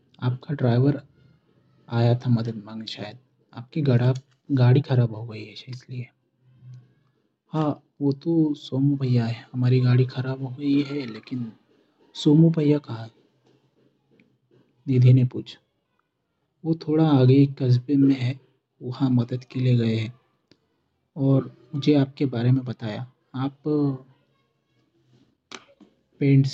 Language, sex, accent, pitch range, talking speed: Hindi, male, native, 125-145 Hz, 120 wpm